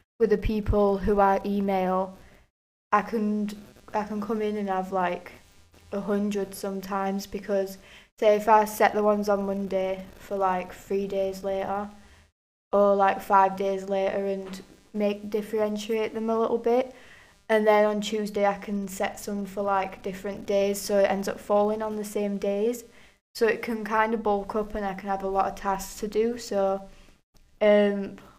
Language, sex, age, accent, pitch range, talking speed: English, female, 10-29, British, 195-210 Hz, 180 wpm